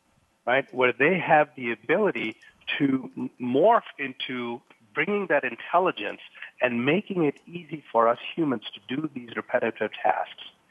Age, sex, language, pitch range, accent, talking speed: 50-69, male, English, 115-140 Hz, American, 140 wpm